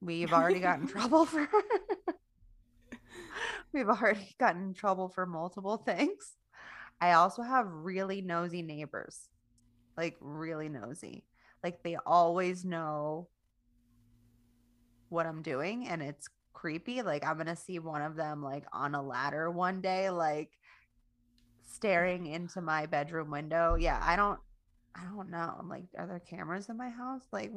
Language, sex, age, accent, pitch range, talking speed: English, female, 20-39, American, 155-200 Hz, 145 wpm